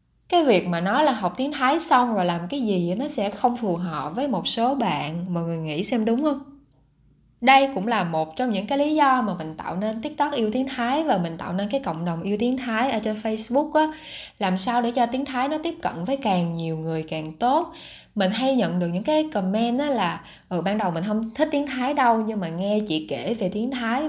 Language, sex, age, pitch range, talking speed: Vietnamese, female, 20-39, 180-260 Hz, 245 wpm